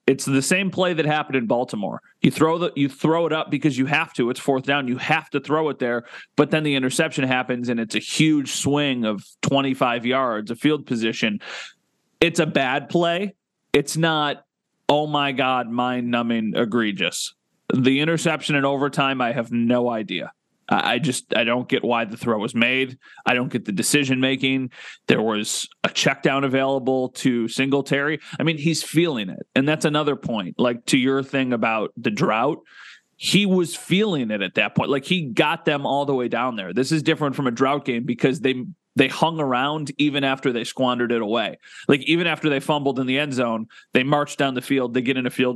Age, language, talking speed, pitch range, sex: 30-49, English, 205 wpm, 125-155 Hz, male